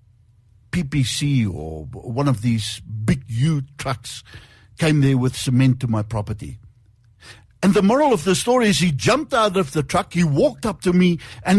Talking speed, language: 175 wpm, English